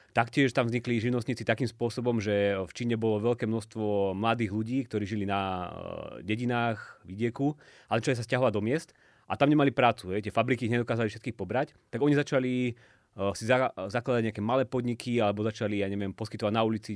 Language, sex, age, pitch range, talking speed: Slovak, male, 30-49, 105-125 Hz, 185 wpm